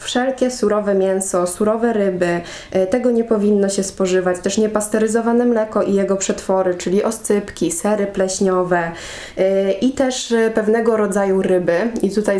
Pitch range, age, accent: 185-220 Hz, 20-39, native